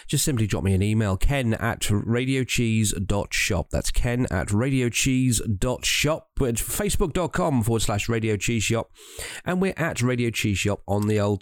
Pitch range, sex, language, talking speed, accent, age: 95-125 Hz, male, English, 145 wpm, British, 40-59